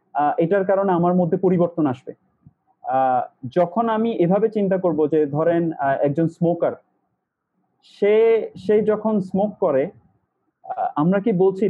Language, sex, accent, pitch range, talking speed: Bengali, male, native, 155-200 Hz, 120 wpm